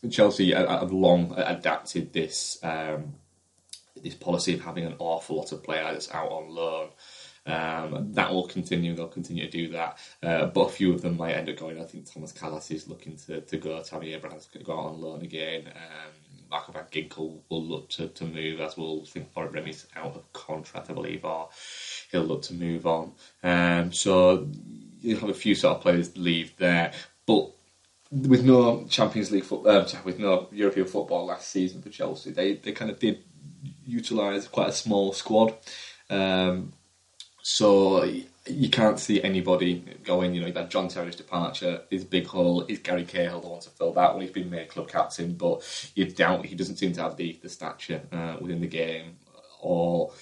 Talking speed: 195 wpm